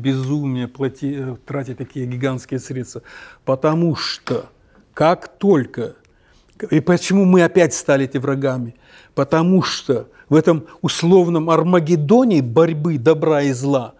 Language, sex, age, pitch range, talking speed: Russian, male, 60-79, 135-165 Hz, 110 wpm